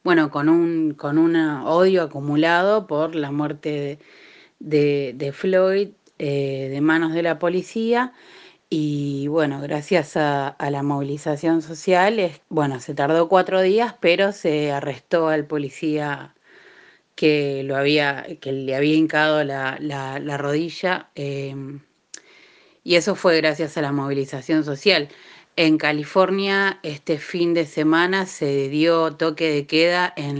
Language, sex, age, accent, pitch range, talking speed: Spanish, female, 30-49, Argentinian, 145-170 Hz, 140 wpm